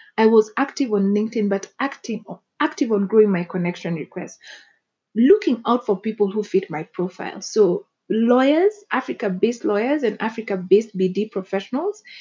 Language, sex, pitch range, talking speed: English, female, 190-230 Hz, 145 wpm